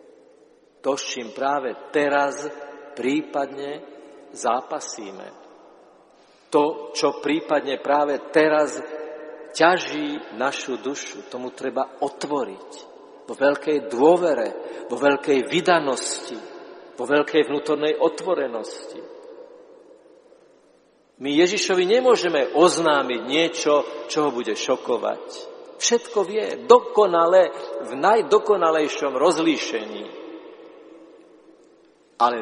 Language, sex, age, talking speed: Slovak, male, 50-69, 80 wpm